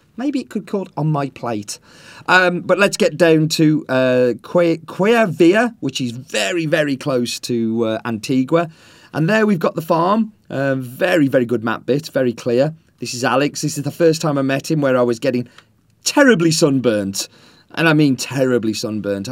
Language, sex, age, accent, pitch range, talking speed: English, male, 30-49, British, 110-165 Hz, 195 wpm